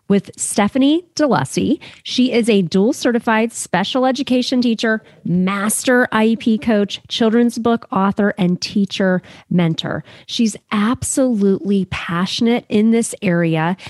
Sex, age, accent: female, 40-59, American